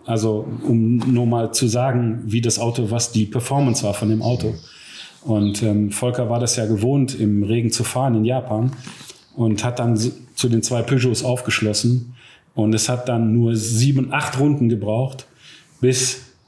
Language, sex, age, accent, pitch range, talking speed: German, male, 40-59, German, 110-125 Hz, 170 wpm